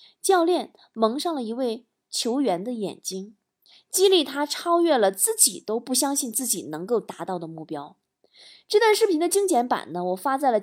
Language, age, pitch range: Chinese, 20-39, 215-335 Hz